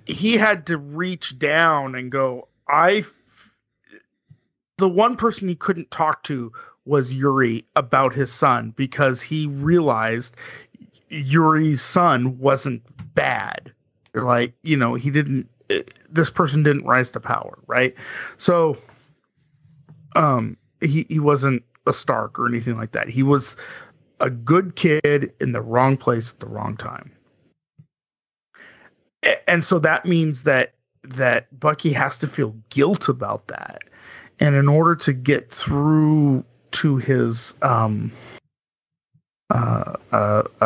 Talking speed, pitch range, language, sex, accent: 130 wpm, 125-155 Hz, English, male, American